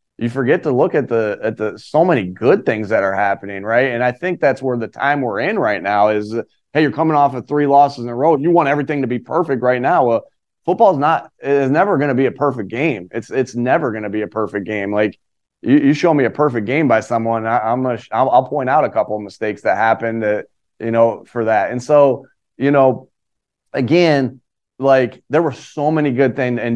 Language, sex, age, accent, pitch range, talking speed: English, male, 30-49, American, 115-140 Hz, 245 wpm